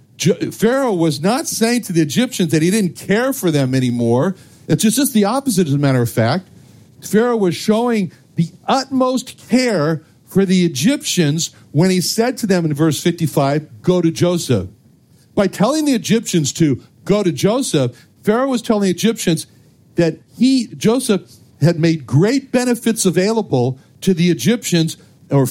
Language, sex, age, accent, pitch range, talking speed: English, male, 60-79, American, 135-200 Hz, 160 wpm